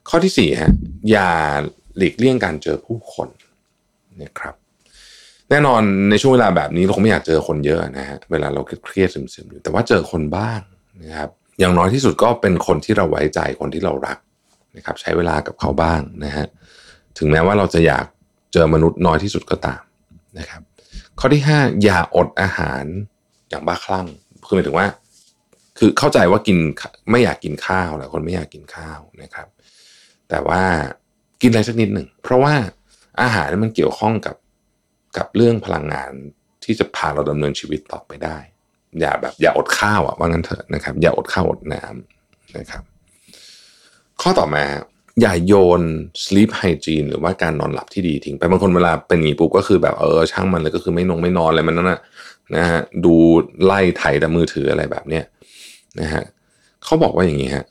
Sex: male